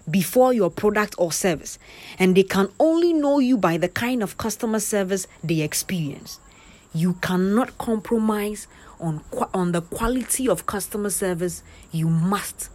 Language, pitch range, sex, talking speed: English, 175-255 Hz, female, 150 wpm